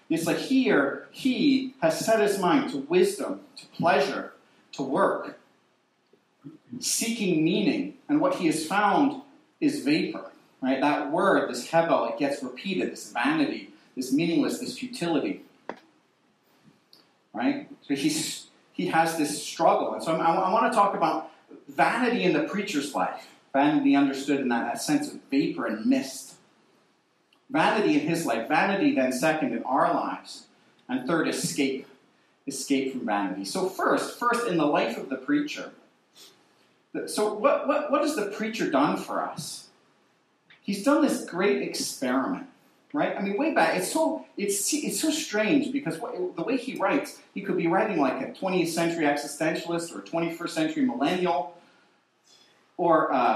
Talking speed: 155 wpm